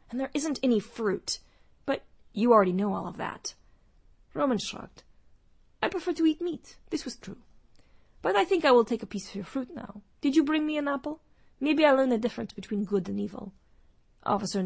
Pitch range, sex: 190-250 Hz, female